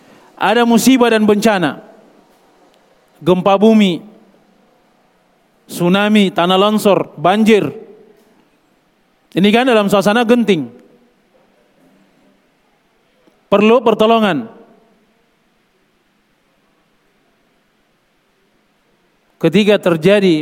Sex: male